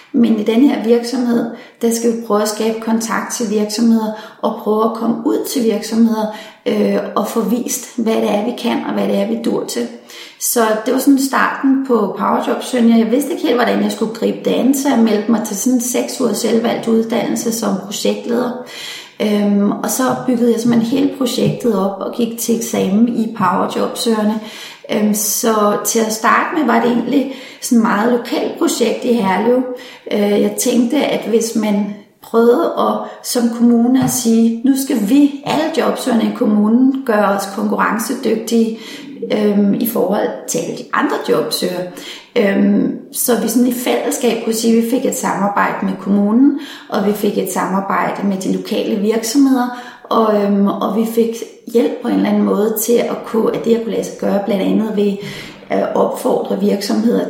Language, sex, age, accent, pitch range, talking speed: Danish, female, 30-49, native, 215-245 Hz, 180 wpm